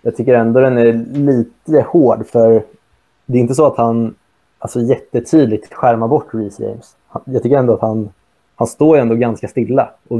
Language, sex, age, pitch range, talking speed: Swedish, male, 20-39, 110-125 Hz, 190 wpm